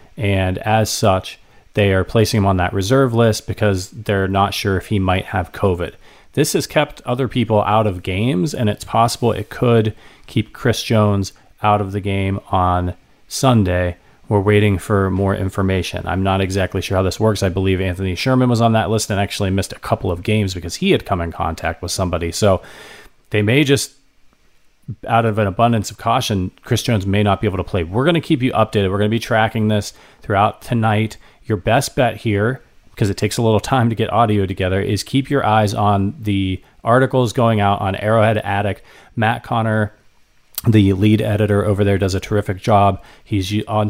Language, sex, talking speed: English, male, 200 wpm